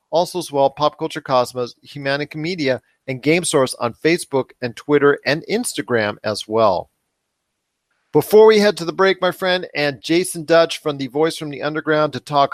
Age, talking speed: 40-59, 180 wpm